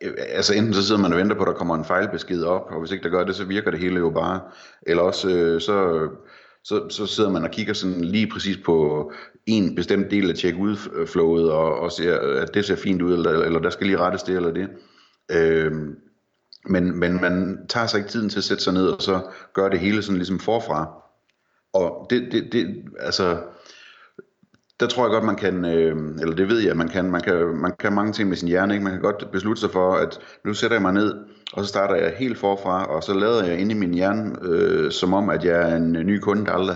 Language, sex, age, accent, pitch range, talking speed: Danish, male, 30-49, native, 85-105 Hz, 235 wpm